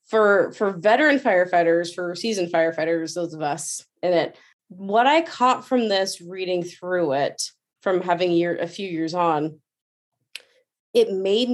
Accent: American